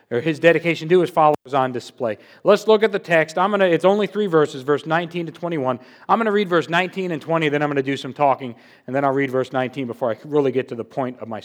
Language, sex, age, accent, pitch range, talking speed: English, male, 40-59, American, 160-235 Hz, 280 wpm